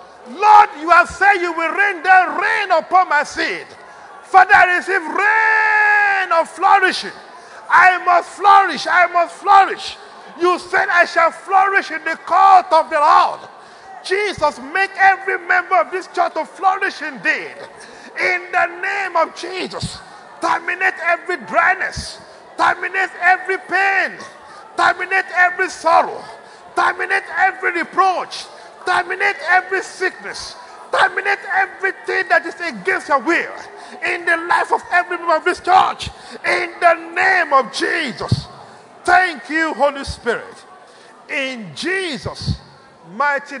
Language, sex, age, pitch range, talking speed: English, male, 50-69, 280-380 Hz, 130 wpm